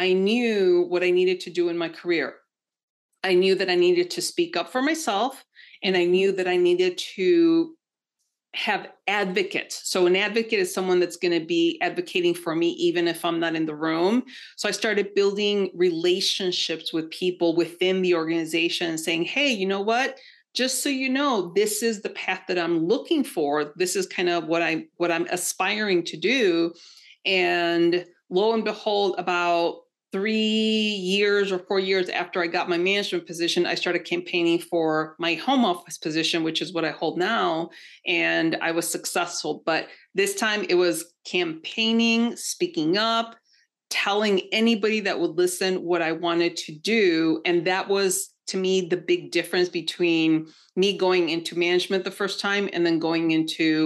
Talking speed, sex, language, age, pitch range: 175 wpm, female, English, 40-59, 170-225 Hz